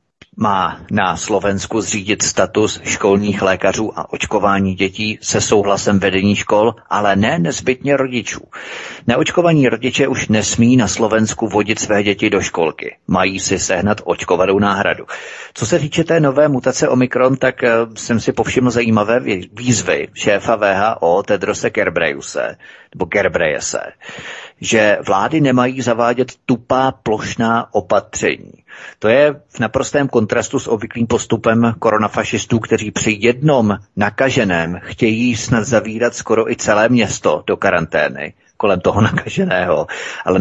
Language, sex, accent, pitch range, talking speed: Czech, male, native, 105-130 Hz, 125 wpm